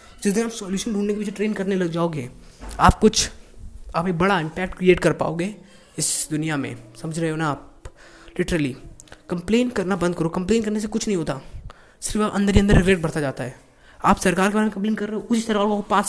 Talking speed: 220 wpm